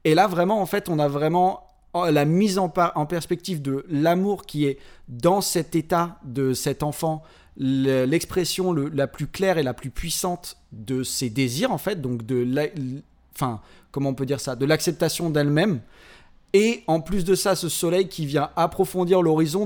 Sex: male